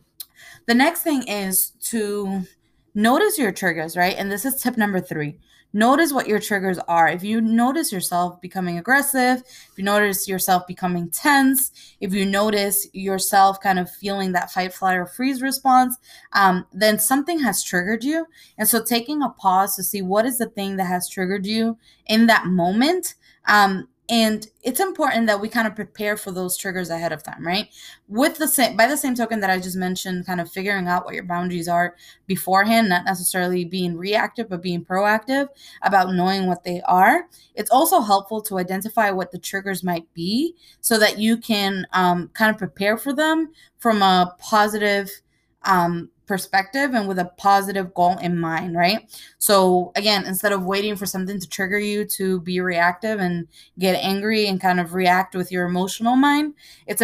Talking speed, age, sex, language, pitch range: 185 wpm, 20-39, female, English, 185-230 Hz